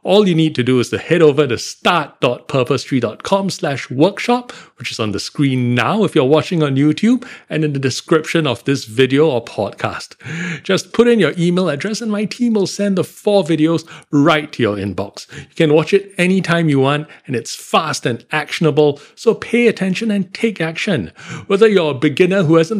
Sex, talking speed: male, 195 wpm